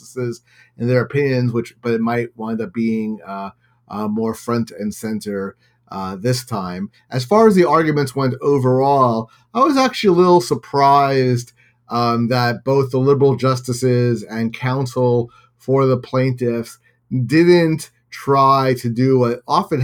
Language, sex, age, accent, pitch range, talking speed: English, male, 30-49, American, 120-135 Hz, 150 wpm